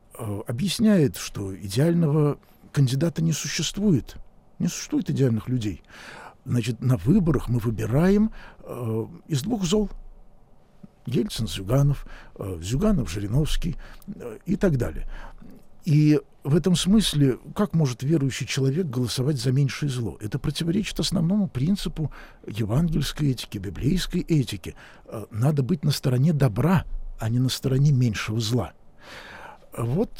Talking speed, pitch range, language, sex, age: 120 wpm, 115-160 Hz, Russian, male, 60-79